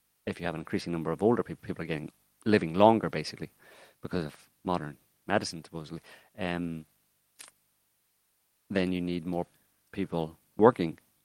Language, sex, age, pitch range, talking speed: English, male, 30-49, 80-95 Hz, 145 wpm